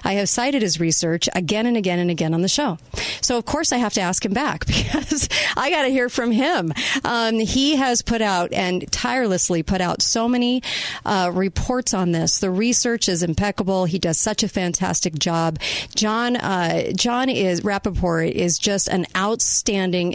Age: 40-59